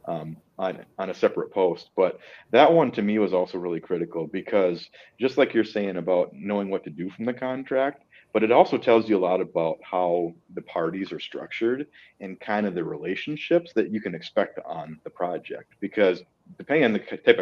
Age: 40-59